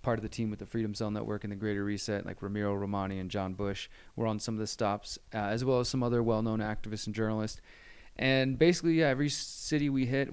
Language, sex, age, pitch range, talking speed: English, male, 20-39, 105-120 Hz, 245 wpm